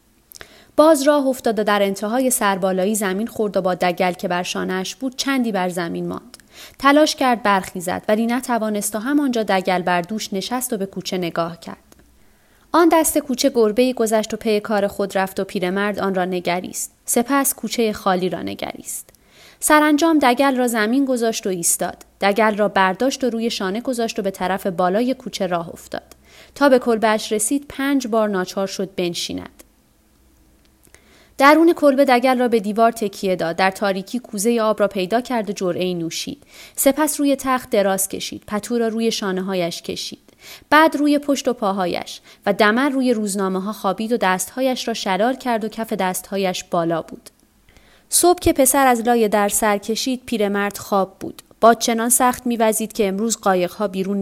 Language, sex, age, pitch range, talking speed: Persian, female, 30-49, 190-245 Hz, 170 wpm